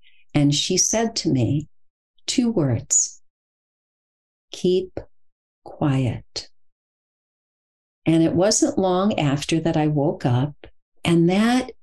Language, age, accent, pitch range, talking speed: English, 50-69, American, 140-190 Hz, 100 wpm